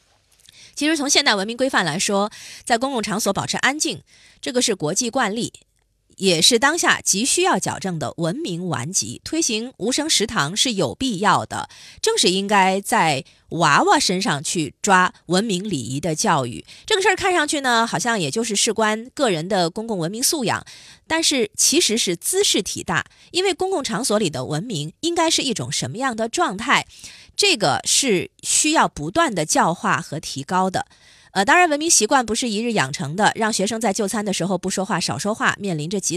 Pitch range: 175-270 Hz